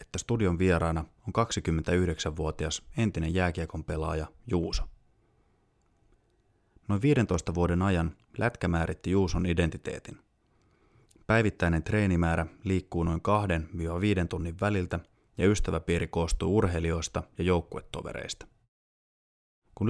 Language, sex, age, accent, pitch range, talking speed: Finnish, male, 20-39, native, 80-105 Hz, 95 wpm